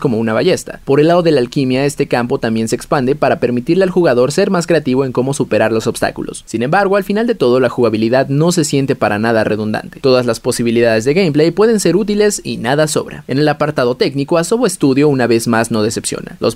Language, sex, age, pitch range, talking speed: Spanish, male, 20-39, 120-170 Hz, 230 wpm